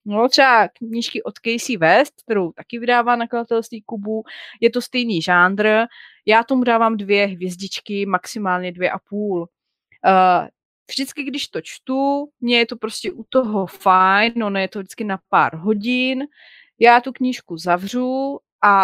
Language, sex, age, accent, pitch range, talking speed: Czech, female, 30-49, native, 200-245 Hz, 155 wpm